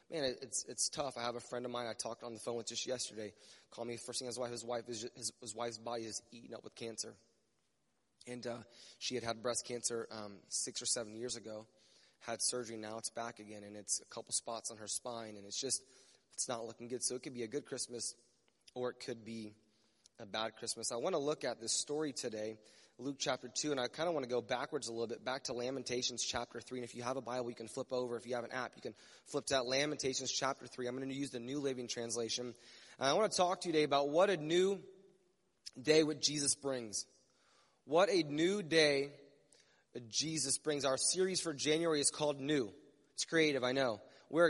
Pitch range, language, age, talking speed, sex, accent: 115-145 Hz, English, 20-39, 240 wpm, male, American